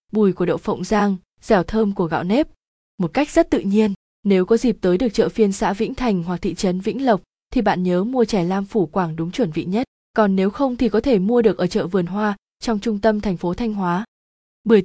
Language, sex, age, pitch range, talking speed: Vietnamese, female, 20-39, 185-225 Hz, 250 wpm